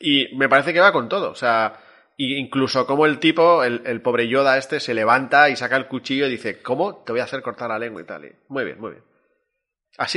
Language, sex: Spanish, male